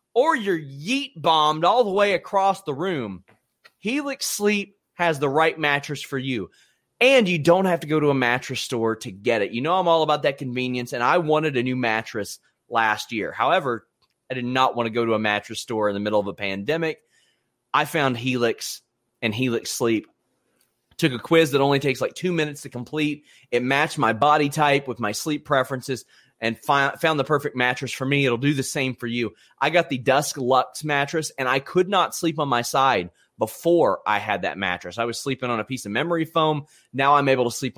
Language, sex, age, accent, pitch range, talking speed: English, male, 30-49, American, 120-155 Hz, 215 wpm